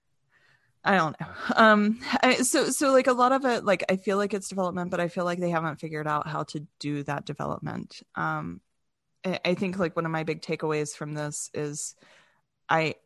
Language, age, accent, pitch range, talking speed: English, 20-39, American, 155-195 Hz, 205 wpm